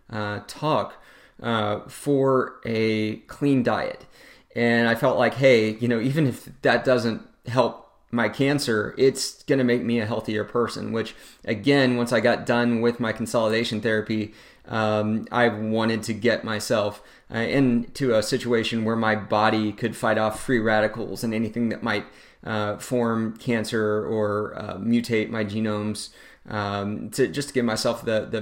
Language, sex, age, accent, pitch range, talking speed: English, male, 30-49, American, 110-125 Hz, 165 wpm